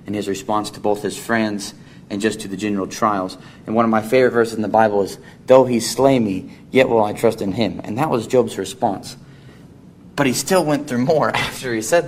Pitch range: 100-130 Hz